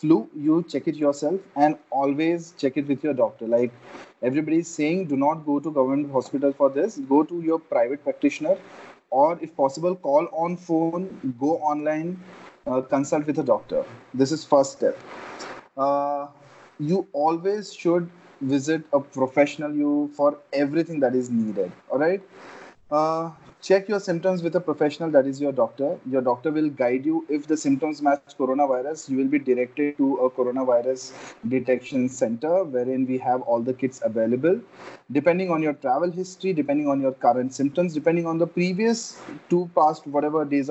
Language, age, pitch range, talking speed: Hindi, 20-39, 140-175 Hz, 170 wpm